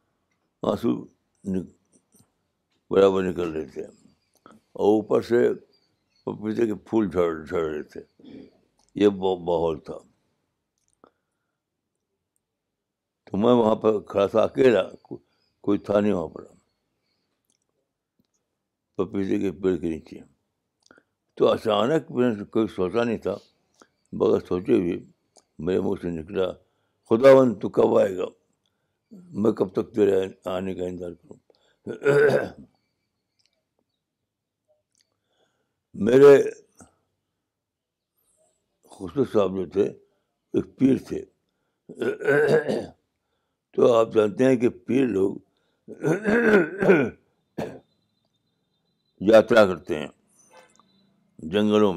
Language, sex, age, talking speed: Urdu, male, 60-79, 90 wpm